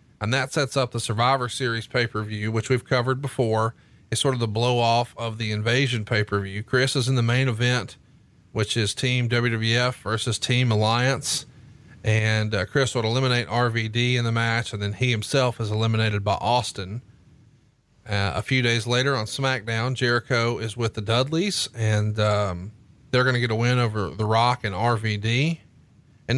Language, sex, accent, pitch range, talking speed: English, male, American, 115-140 Hz, 175 wpm